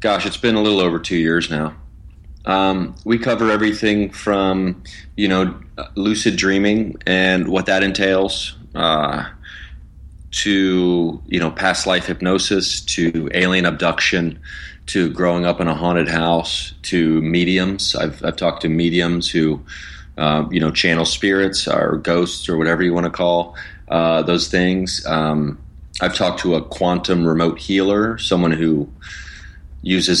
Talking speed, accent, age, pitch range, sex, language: 145 wpm, American, 30-49, 75-95 Hz, male, English